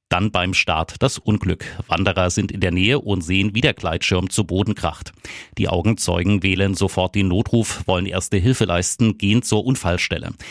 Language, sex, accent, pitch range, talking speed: German, male, German, 90-105 Hz, 175 wpm